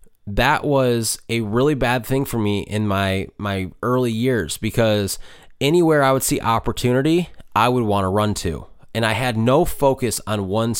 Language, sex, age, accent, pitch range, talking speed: English, male, 20-39, American, 105-130 Hz, 180 wpm